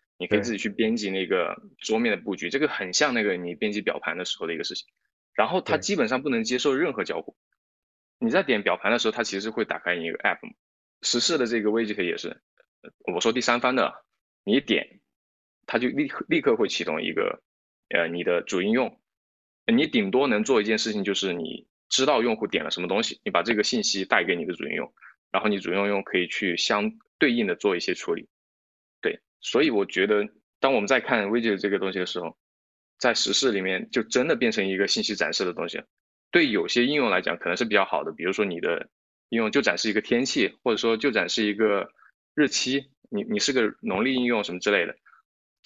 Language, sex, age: Chinese, male, 20-39